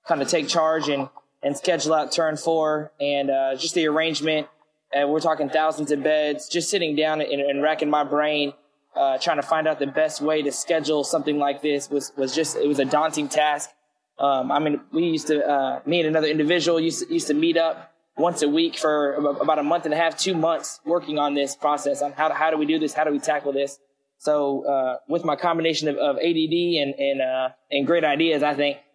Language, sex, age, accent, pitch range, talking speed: English, male, 20-39, American, 140-160 Hz, 230 wpm